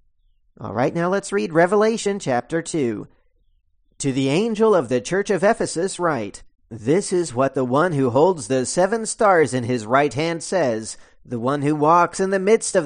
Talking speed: 185 wpm